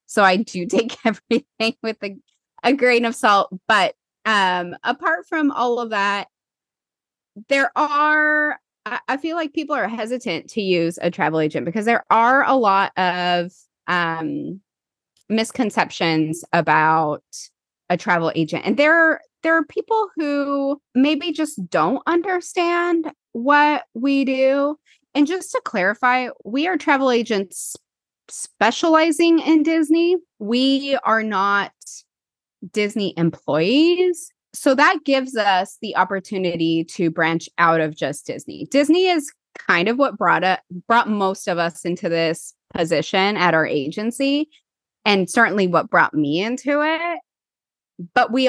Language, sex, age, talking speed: English, female, 20-39, 140 wpm